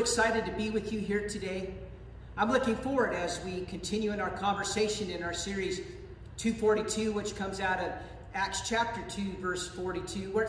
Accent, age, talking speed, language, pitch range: American, 50-69, 170 wpm, English, 180-225 Hz